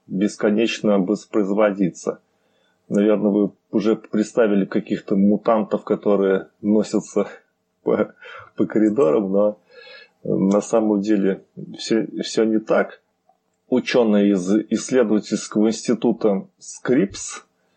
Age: 20-39